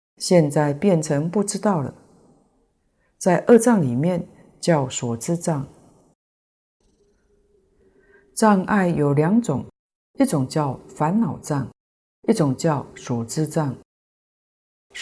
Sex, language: female, Chinese